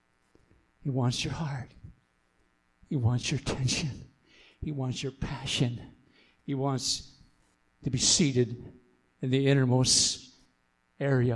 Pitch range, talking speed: 110-175 Hz, 110 wpm